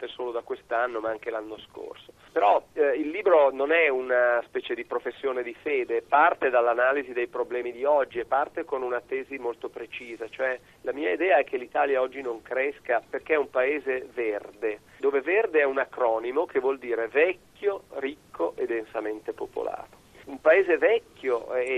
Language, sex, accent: Italian, male, native